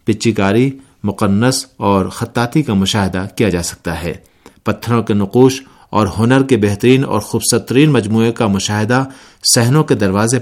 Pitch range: 100-130 Hz